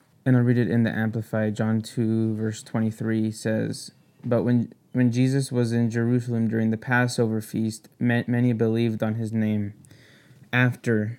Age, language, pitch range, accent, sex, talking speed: 20-39, English, 110-120 Hz, American, male, 160 wpm